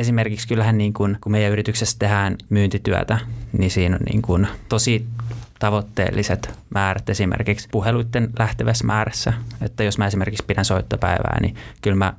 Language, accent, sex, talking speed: Finnish, native, male, 150 wpm